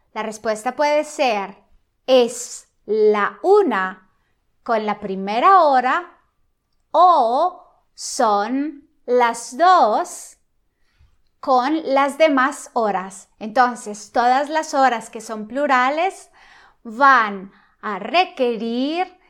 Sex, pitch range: female, 225-295 Hz